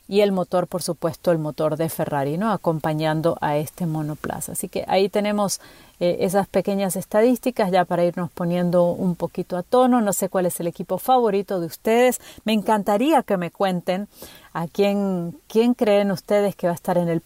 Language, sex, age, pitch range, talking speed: Spanish, female, 40-59, 170-210 Hz, 190 wpm